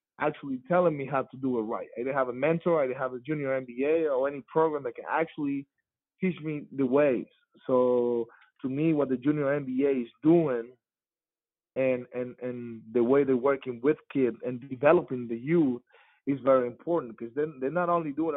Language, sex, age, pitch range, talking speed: English, male, 30-49, 125-155 Hz, 200 wpm